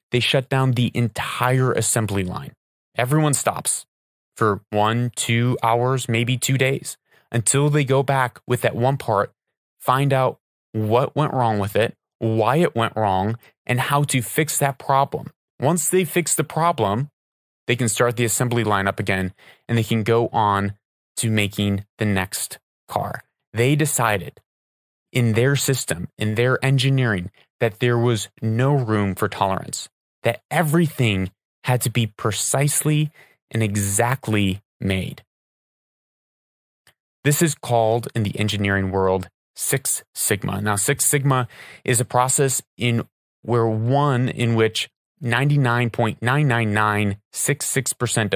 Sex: male